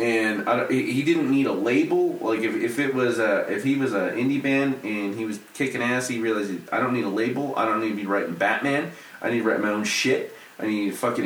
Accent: American